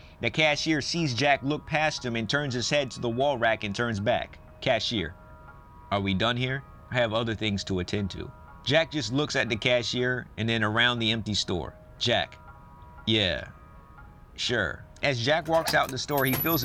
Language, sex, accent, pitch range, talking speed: English, male, American, 105-140 Hz, 195 wpm